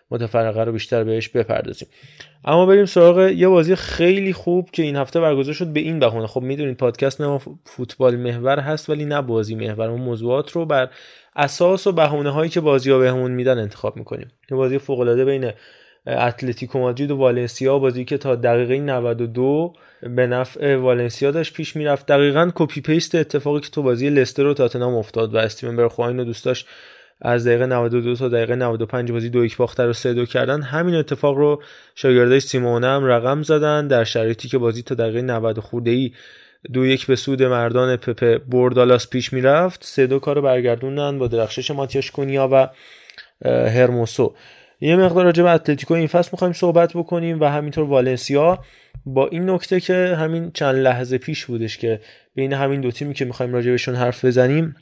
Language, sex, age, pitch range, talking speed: Persian, male, 20-39, 120-150 Hz, 170 wpm